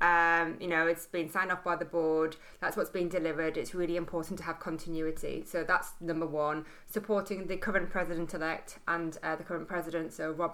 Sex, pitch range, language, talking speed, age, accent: female, 170-190 Hz, English, 205 wpm, 20-39, British